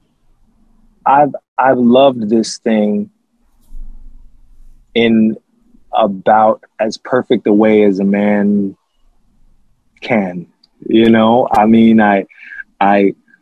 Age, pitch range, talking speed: 20-39, 105-145 Hz, 95 wpm